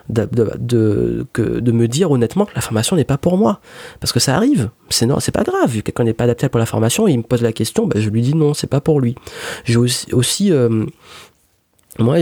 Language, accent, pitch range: French, French, 115-145 Hz